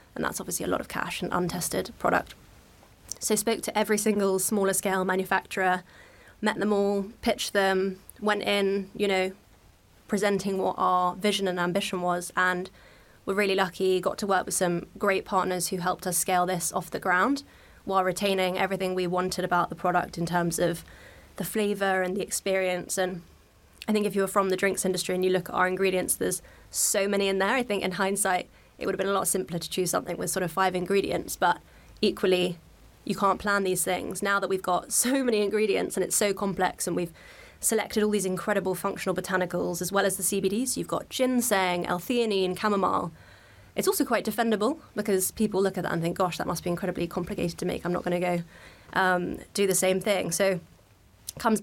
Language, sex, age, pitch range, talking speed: English, female, 20-39, 180-200 Hz, 205 wpm